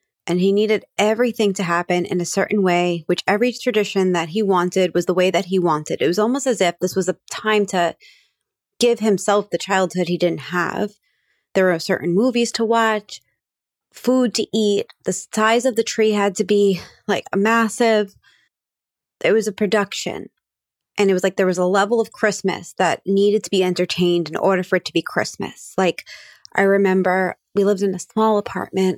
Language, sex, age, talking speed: English, female, 20-39, 195 wpm